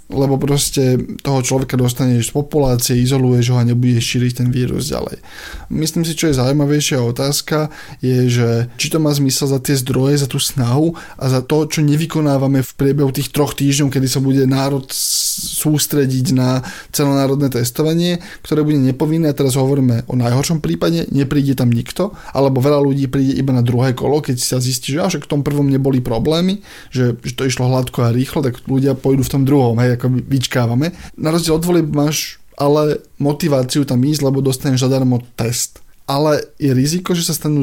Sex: male